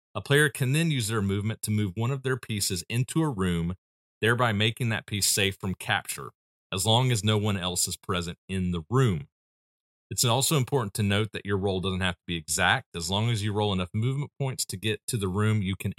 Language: English